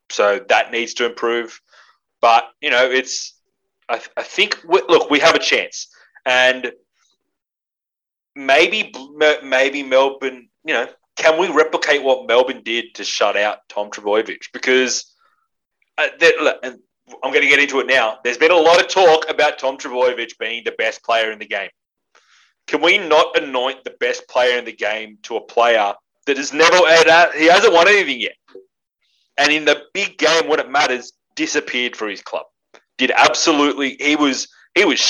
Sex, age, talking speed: male, 30-49, 175 wpm